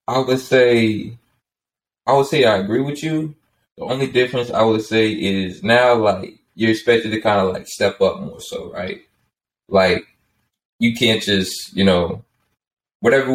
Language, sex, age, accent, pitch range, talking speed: English, male, 20-39, American, 95-115 Hz, 165 wpm